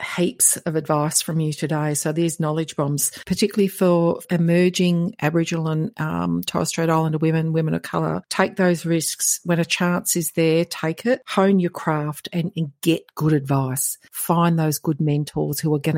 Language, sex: English, female